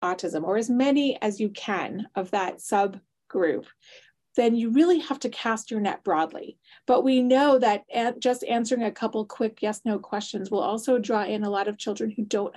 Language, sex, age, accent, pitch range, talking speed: English, female, 30-49, American, 190-230 Hz, 190 wpm